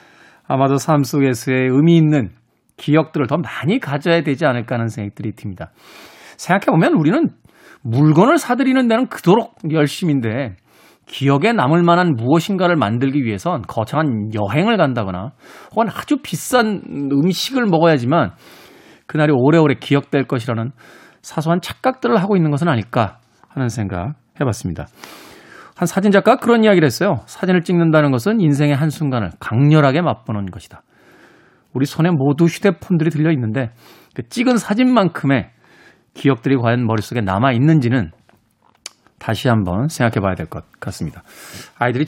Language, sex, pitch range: Korean, male, 125-170 Hz